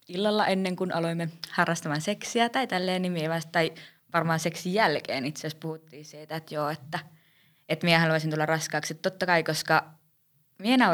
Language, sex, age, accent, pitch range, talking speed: Finnish, female, 20-39, native, 150-170 Hz, 165 wpm